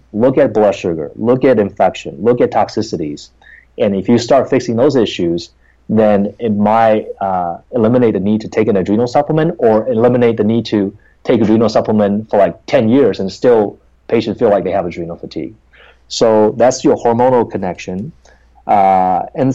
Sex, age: male, 30-49